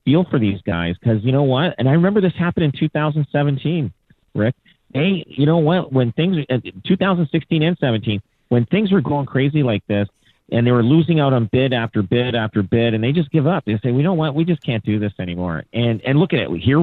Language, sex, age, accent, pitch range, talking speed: English, male, 40-59, American, 105-140 Hz, 230 wpm